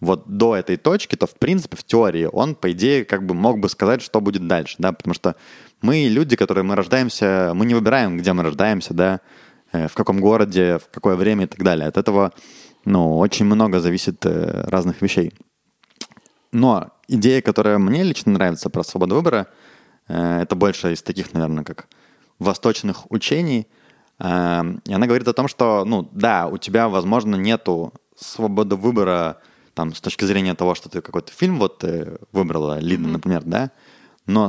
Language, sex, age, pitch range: Russian, male, 20-39, 90-115 Hz